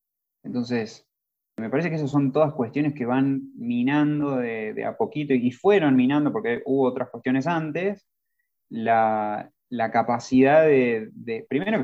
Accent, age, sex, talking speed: Argentinian, 20-39, male, 145 wpm